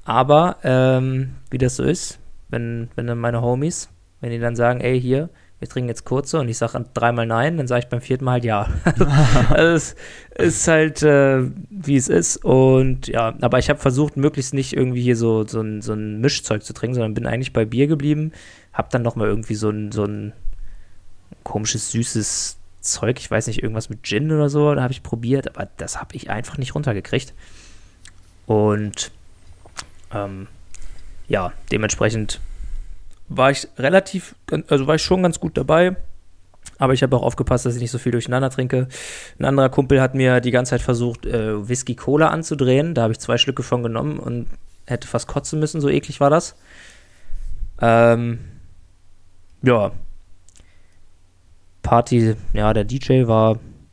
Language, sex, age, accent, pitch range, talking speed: German, male, 20-39, German, 100-135 Hz, 175 wpm